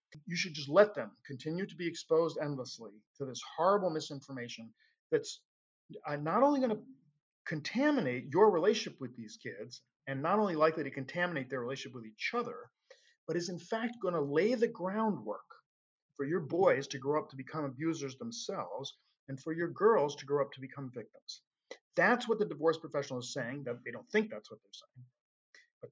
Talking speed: 190 wpm